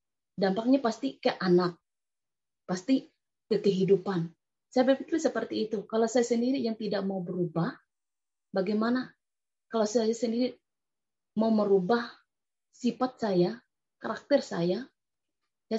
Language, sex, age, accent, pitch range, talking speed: Indonesian, female, 20-39, native, 200-250 Hz, 110 wpm